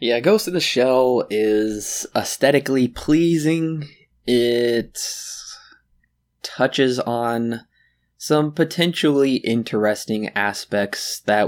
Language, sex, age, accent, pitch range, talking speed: English, male, 20-39, American, 110-135 Hz, 85 wpm